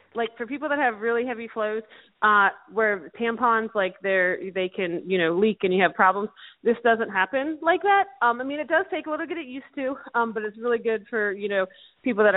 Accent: American